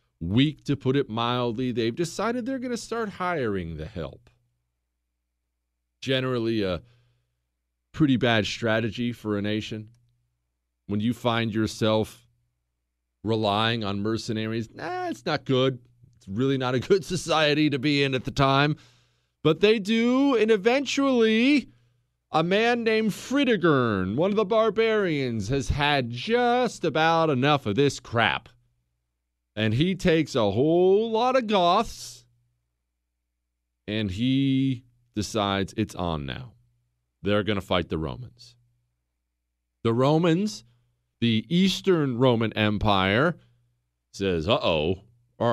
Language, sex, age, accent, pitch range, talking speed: English, male, 40-59, American, 100-165 Hz, 125 wpm